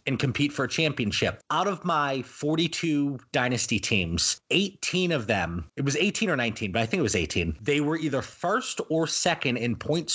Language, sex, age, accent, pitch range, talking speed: English, male, 30-49, American, 120-155 Hz, 195 wpm